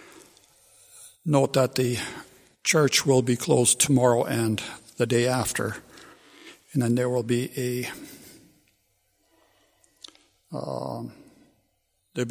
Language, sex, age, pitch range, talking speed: English, male, 60-79, 120-140 Hz, 95 wpm